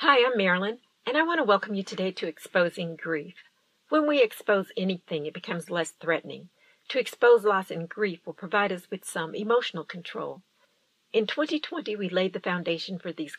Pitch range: 185-240 Hz